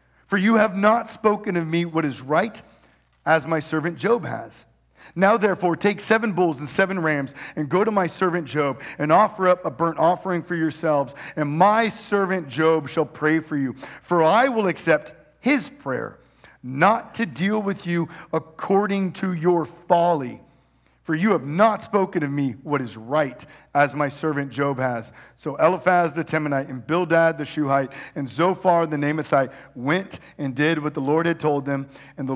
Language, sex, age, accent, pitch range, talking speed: English, male, 50-69, American, 140-185 Hz, 180 wpm